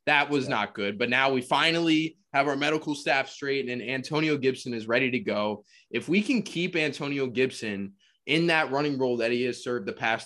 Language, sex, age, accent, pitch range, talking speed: English, male, 20-39, American, 120-165 Hz, 210 wpm